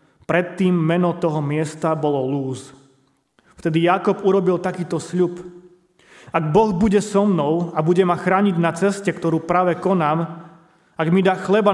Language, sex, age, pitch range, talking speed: Slovak, male, 30-49, 150-180 Hz, 150 wpm